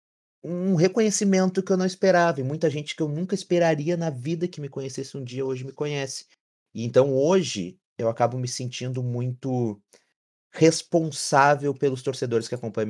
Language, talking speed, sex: Portuguese, 165 wpm, male